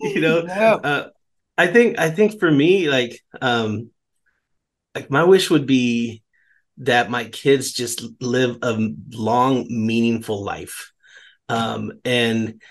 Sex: male